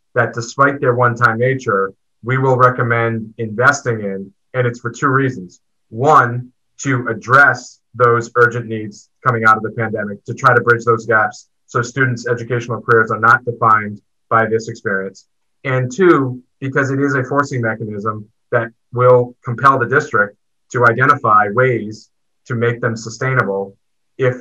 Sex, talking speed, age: male, 155 wpm, 30-49